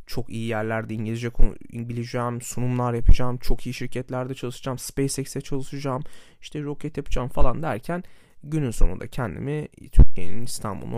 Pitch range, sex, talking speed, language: 110-145 Hz, male, 135 wpm, Turkish